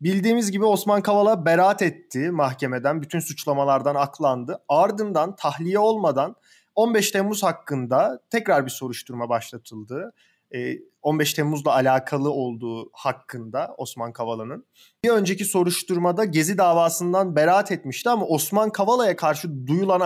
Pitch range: 140-195 Hz